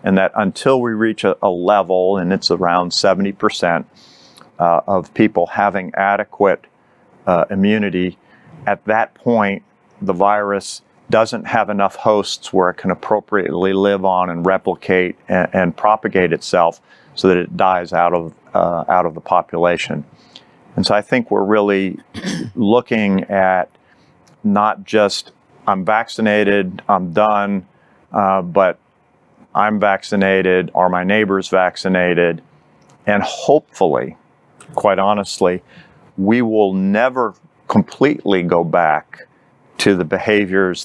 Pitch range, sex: 90-100 Hz, male